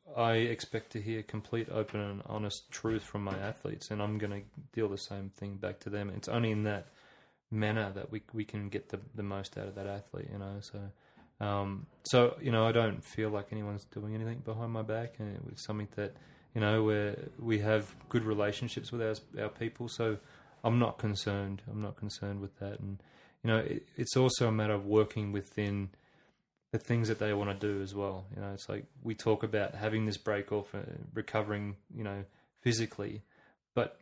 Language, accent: English, Australian